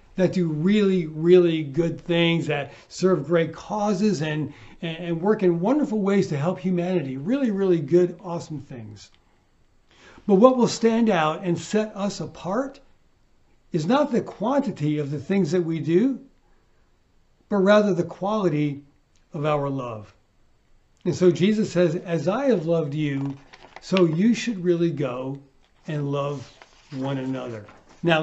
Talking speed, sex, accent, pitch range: 145 wpm, male, American, 145-185 Hz